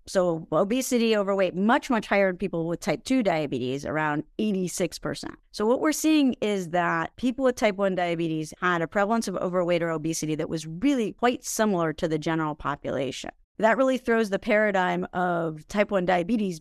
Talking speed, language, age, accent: 180 wpm, English, 30-49, American